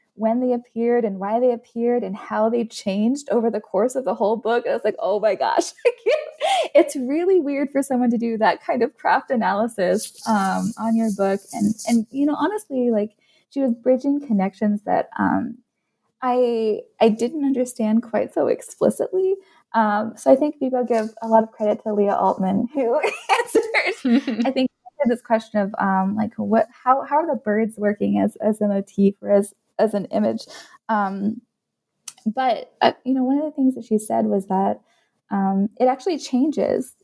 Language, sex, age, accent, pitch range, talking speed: English, female, 20-39, American, 210-260 Hz, 190 wpm